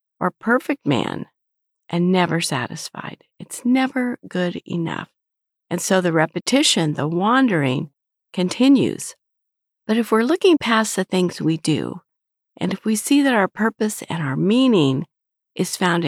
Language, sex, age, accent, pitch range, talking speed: English, female, 50-69, American, 165-230 Hz, 140 wpm